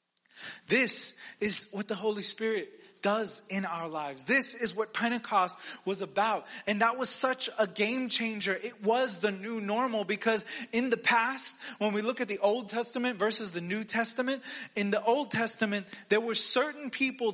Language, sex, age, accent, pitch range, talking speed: English, male, 30-49, American, 200-250 Hz, 175 wpm